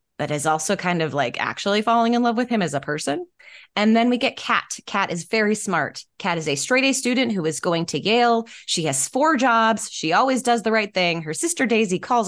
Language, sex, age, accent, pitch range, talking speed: English, female, 20-39, American, 160-225 Hz, 245 wpm